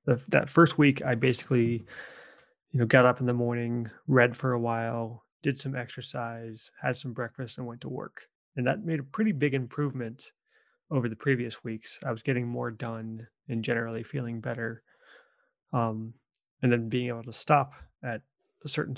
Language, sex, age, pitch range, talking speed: English, male, 30-49, 115-140 Hz, 180 wpm